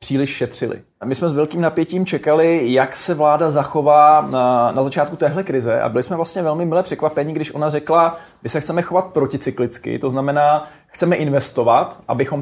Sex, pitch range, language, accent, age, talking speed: male, 135-165 Hz, Czech, native, 20-39, 185 wpm